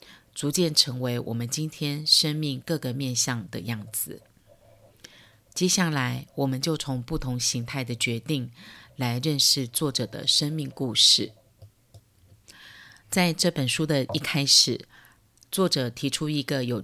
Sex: female